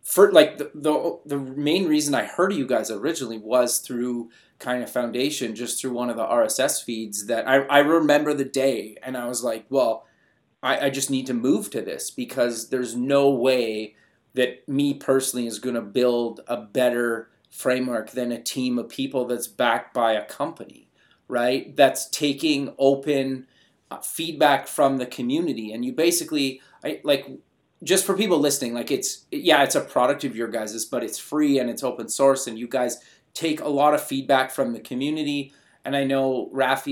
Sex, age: male, 30-49